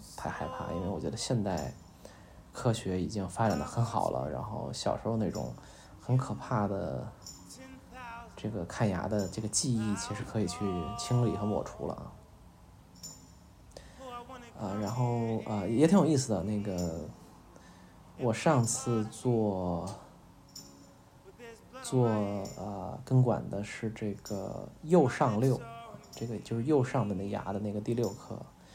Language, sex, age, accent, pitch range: Chinese, male, 20-39, native, 95-130 Hz